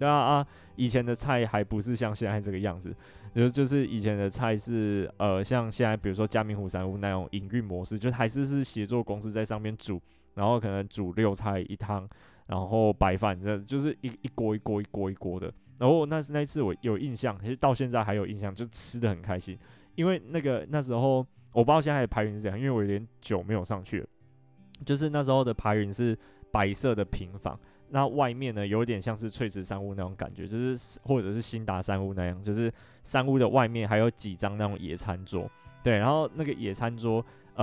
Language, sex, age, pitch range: Chinese, male, 20-39, 100-125 Hz